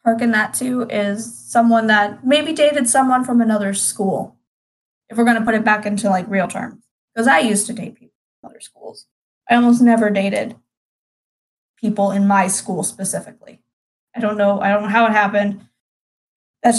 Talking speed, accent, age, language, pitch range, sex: 180 wpm, American, 10-29, English, 200-230 Hz, female